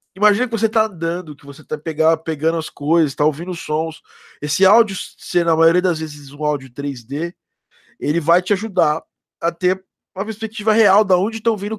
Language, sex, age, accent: Portuguese, male, 20-39, Brazilian